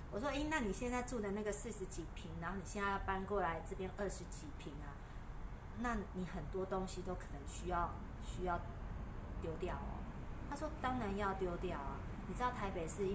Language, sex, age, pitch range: Chinese, female, 30-49, 185-240 Hz